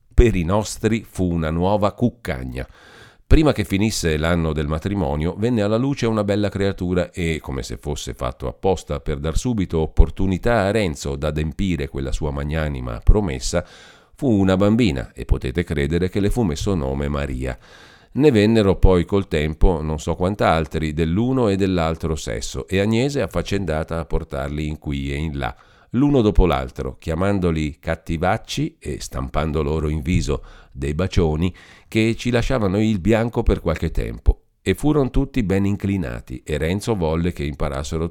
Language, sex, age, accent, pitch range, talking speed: Italian, male, 40-59, native, 75-100 Hz, 155 wpm